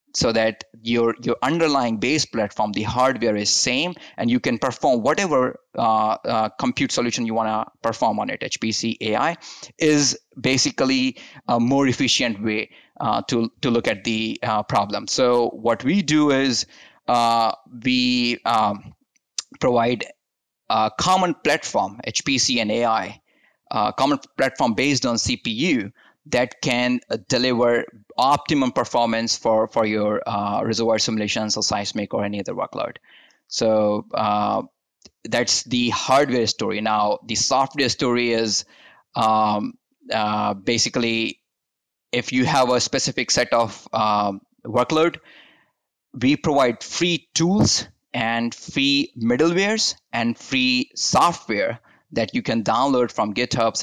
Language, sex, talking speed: English, male, 130 wpm